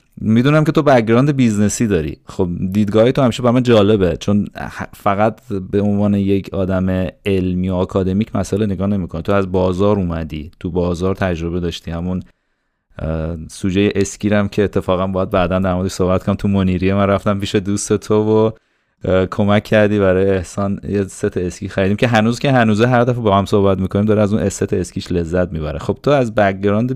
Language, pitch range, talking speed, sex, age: Persian, 90-105 Hz, 175 wpm, male, 30-49